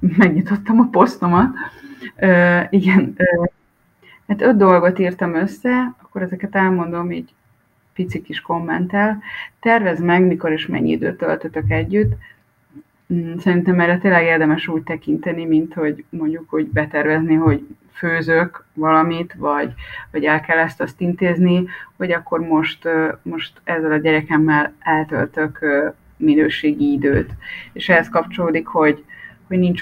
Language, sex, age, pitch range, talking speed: Hungarian, female, 20-39, 155-180 Hz, 130 wpm